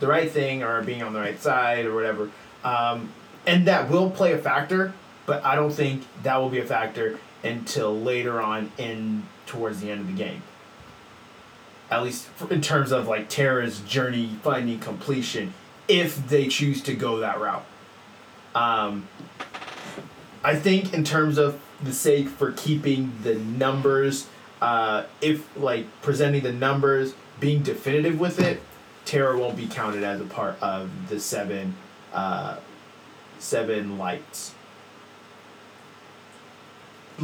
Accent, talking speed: American, 145 wpm